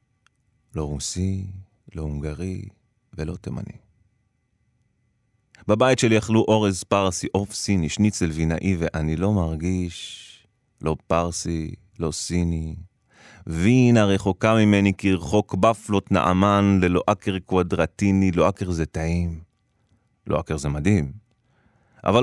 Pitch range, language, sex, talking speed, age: 90-115 Hz, Hebrew, male, 105 wpm, 30-49